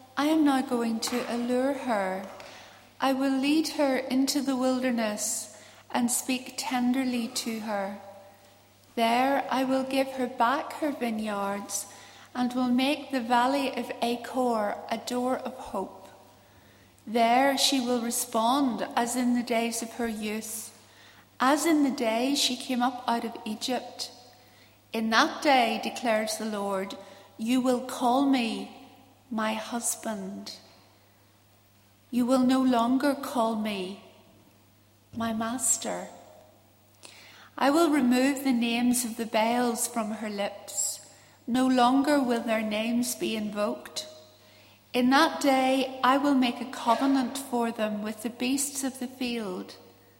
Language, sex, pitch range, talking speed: English, female, 210-260 Hz, 135 wpm